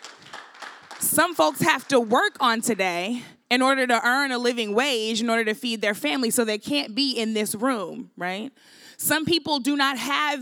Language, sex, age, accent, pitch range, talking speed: English, female, 20-39, American, 235-285 Hz, 190 wpm